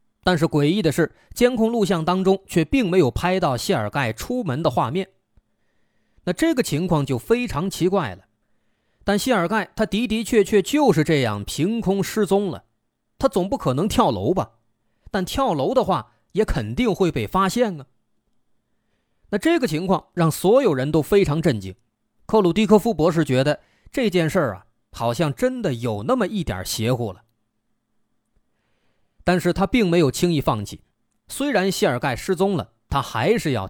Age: 30-49